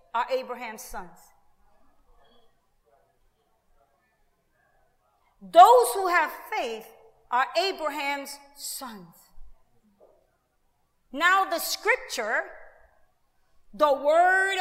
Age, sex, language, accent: 40-59, female, English, American